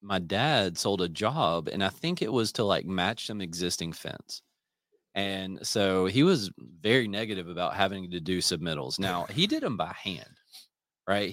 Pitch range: 95-125 Hz